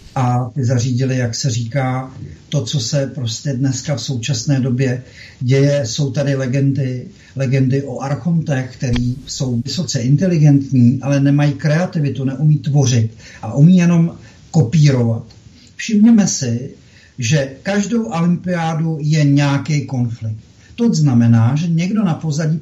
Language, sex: Czech, male